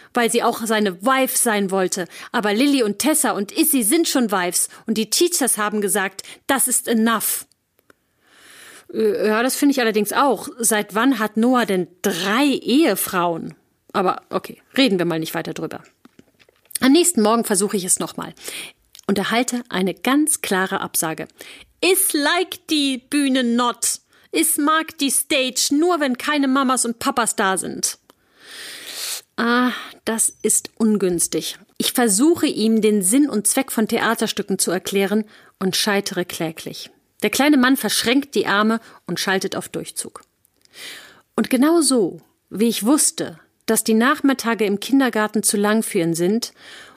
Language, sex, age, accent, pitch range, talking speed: German, female, 30-49, German, 200-265 Hz, 150 wpm